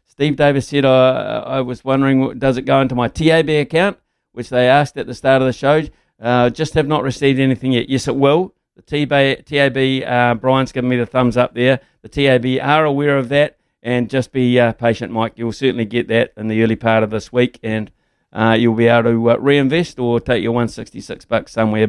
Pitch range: 115-140 Hz